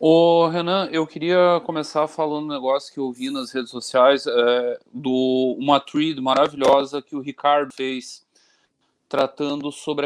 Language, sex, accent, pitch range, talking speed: Portuguese, male, Brazilian, 140-170 Hz, 145 wpm